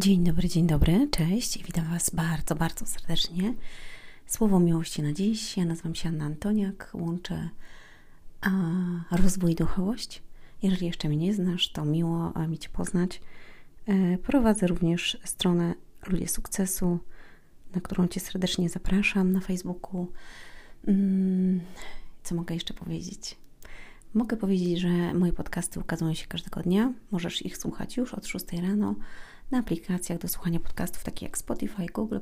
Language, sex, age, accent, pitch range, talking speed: Polish, female, 30-49, native, 170-195 Hz, 140 wpm